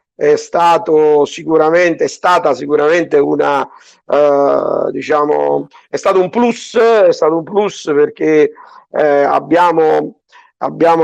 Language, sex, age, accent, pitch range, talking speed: Italian, male, 50-69, native, 145-195 Hz, 115 wpm